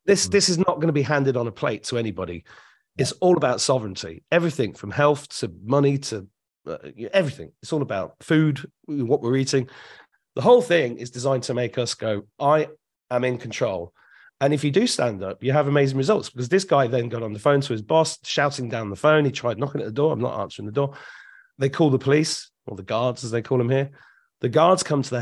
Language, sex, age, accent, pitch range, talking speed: English, male, 40-59, British, 115-150 Hz, 235 wpm